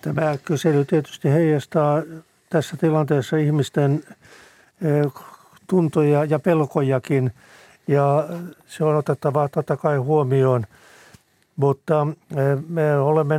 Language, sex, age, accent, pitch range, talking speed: Finnish, male, 60-79, native, 140-155 Hz, 90 wpm